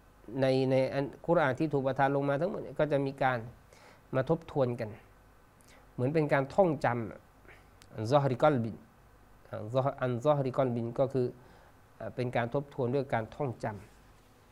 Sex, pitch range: male, 115-145 Hz